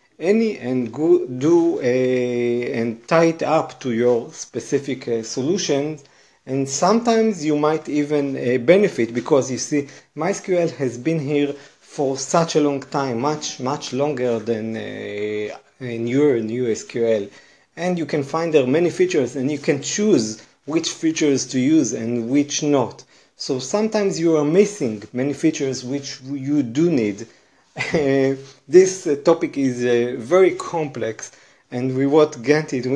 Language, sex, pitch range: English, male, 120-160 Hz